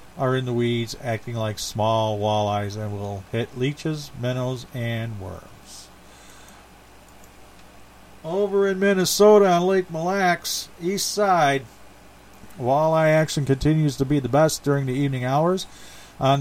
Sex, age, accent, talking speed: male, 50-69, American, 130 wpm